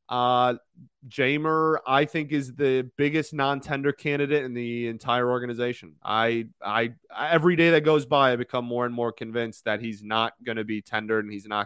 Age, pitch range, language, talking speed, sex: 30-49, 115-145 Hz, English, 185 wpm, male